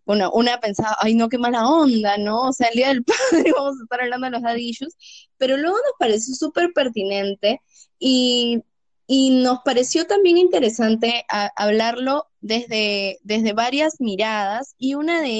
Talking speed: 160 wpm